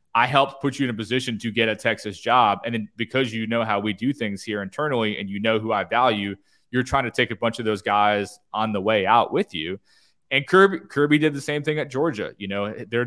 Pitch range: 105-130 Hz